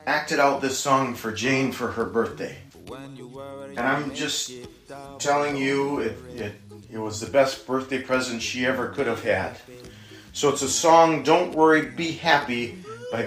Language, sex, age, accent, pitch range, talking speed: English, male, 40-59, American, 120-150 Hz, 165 wpm